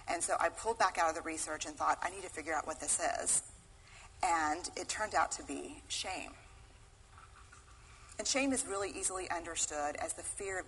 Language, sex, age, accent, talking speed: English, female, 40-59, American, 200 wpm